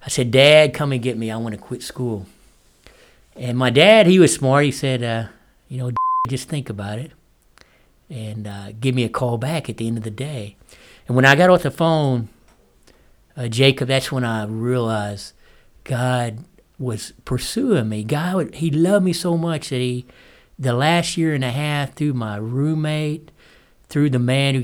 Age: 60-79